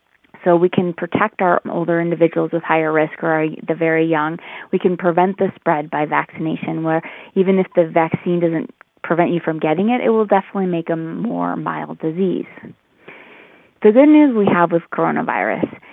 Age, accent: 20-39, American